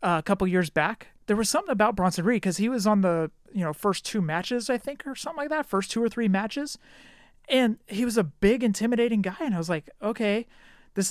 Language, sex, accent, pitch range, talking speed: English, male, American, 165-220 Hz, 245 wpm